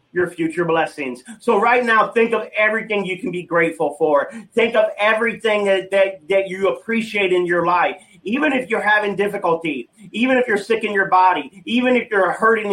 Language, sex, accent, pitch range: English, male, American, 185-230 Hz